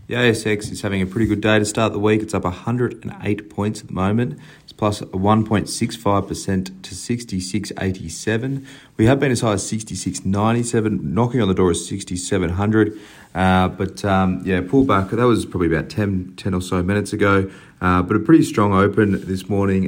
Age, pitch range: 30-49, 90-105 Hz